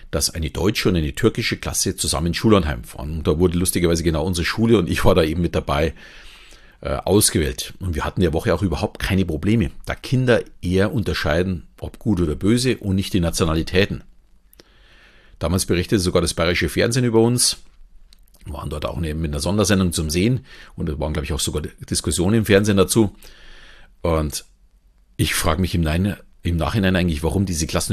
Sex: male